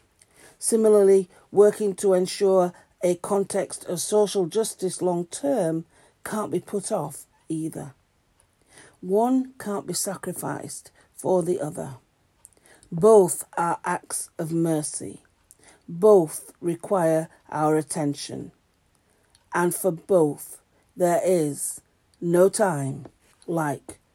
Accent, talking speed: British, 100 wpm